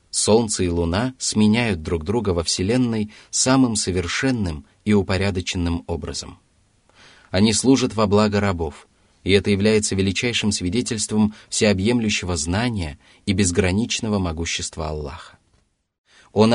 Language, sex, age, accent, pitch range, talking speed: Russian, male, 30-49, native, 90-115 Hz, 110 wpm